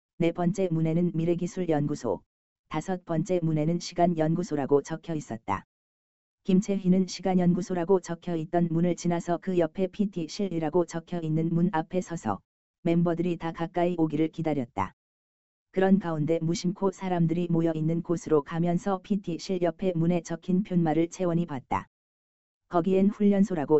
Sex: female